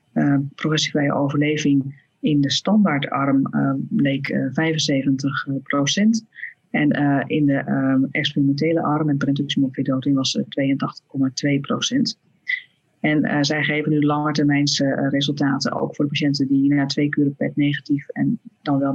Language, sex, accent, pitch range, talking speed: Dutch, female, Dutch, 140-155 Hz, 140 wpm